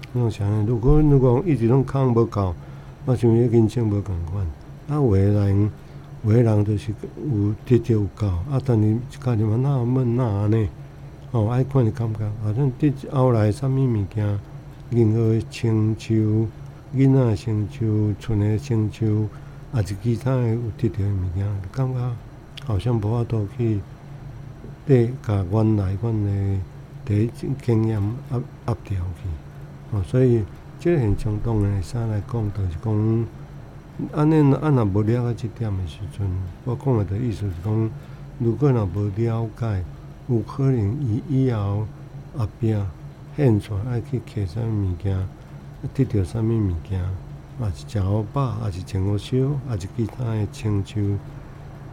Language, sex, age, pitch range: Chinese, male, 60-79, 105-130 Hz